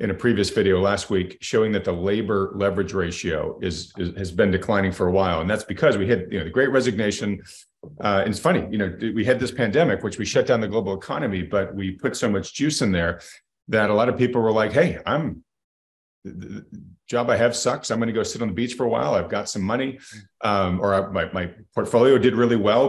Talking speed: 245 wpm